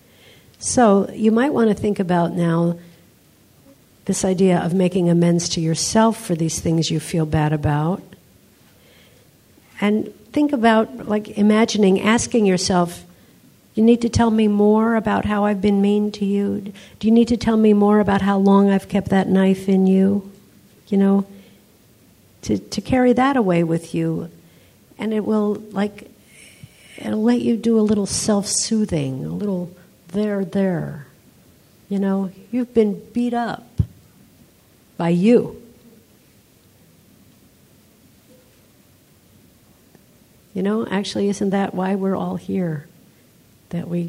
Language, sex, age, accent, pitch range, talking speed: English, female, 50-69, American, 170-210 Hz, 135 wpm